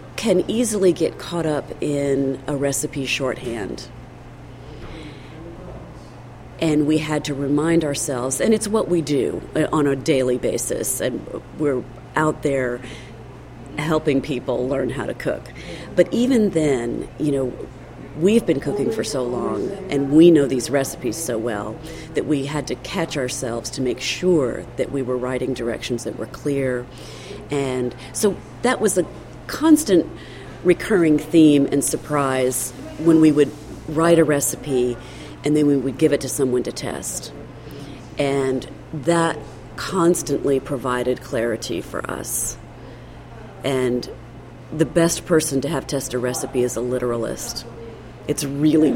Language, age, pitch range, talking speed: English, 40-59, 130-155 Hz, 140 wpm